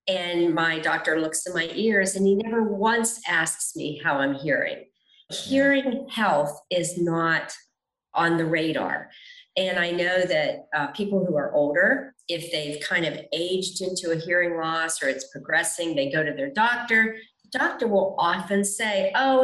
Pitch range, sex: 160-225 Hz, female